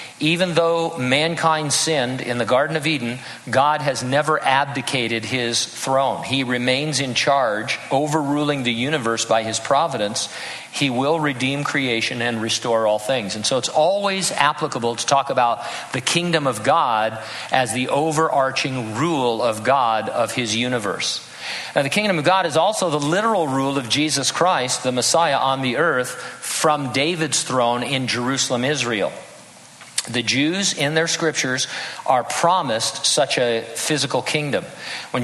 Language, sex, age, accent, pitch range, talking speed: English, male, 50-69, American, 120-155 Hz, 155 wpm